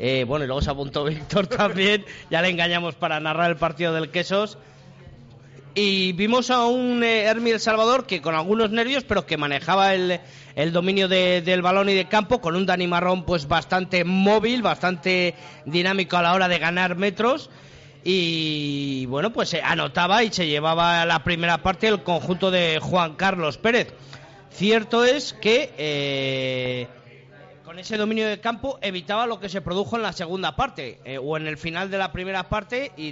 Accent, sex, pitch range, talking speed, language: Spanish, male, 155-195 Hz, 185 wpm, Spanish